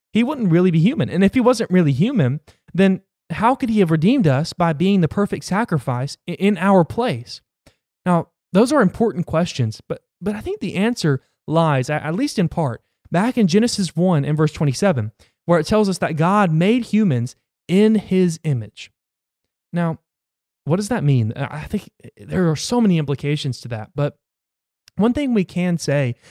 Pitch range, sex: 145-205 Hz, male